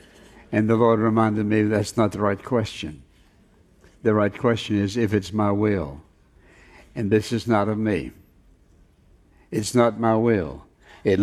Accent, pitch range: American, 95-115 Hz